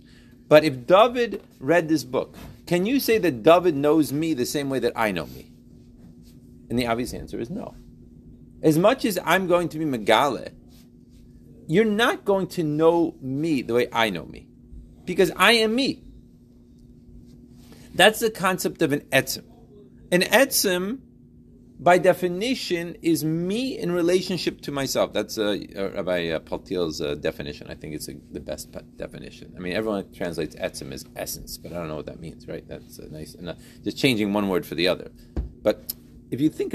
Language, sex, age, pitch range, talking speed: English, male, 40-59, 125-190 Hz, 180 wpm